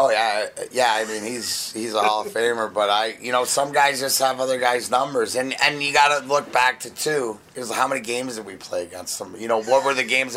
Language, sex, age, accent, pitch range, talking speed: English, male, 30-49, American, 120-145 Hz, 265 wpm